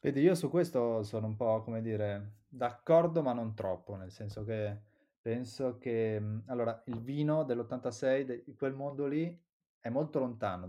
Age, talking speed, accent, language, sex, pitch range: 20-39, 165 wpm, native, Italian, male, 105-130 Hz